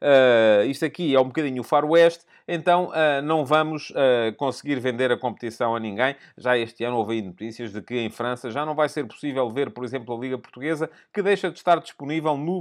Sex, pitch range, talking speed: male, 125-160 Hz, 195 wpm